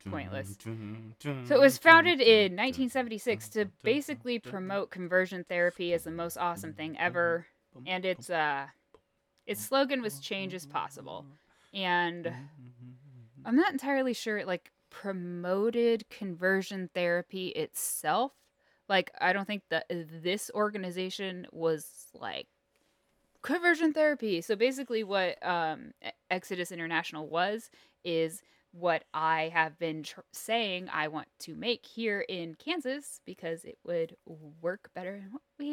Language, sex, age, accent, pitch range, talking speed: English, female, 10-29, American, 165-225 Hz, 130 wpm